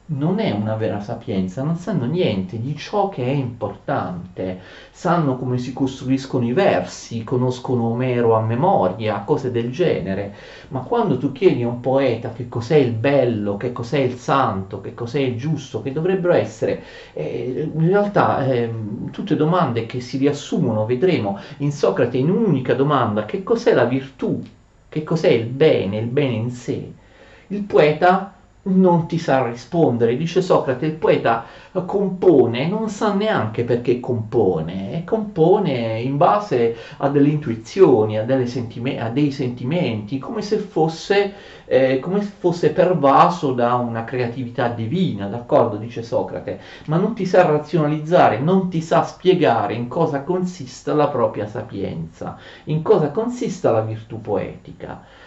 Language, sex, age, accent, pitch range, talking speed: Italian, male, 30-49, native, 120-170 Hz, 150 wpm